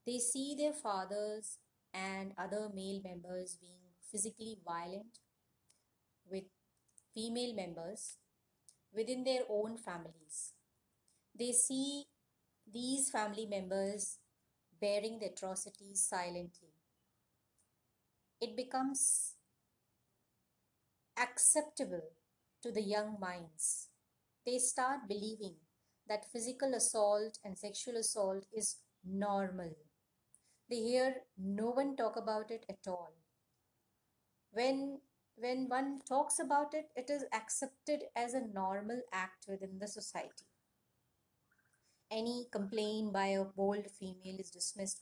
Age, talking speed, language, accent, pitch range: 30-49, 105 wpm, English, Indian, 190-245 Hz